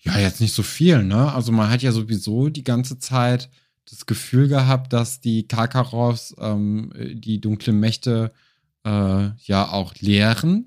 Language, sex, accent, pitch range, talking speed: German, male, German, 105-130 Hz, 155 wpm